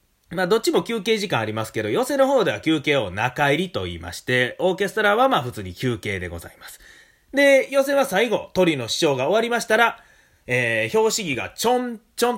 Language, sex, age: Japanese, male, 30-49